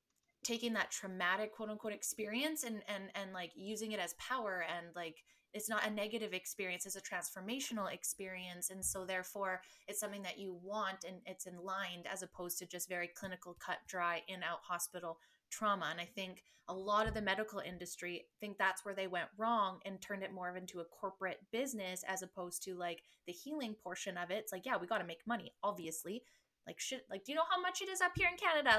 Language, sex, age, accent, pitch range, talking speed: English, female, 20-39, American, 185-215 Hz, 220 wpm